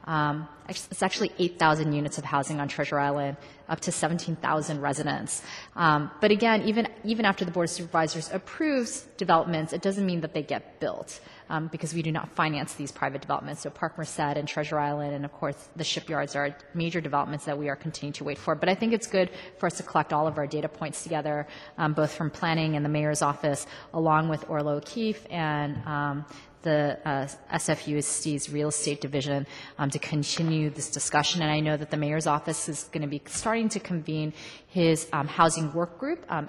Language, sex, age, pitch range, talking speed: English, female, 30-49, 150-170 Hz, 200 wpm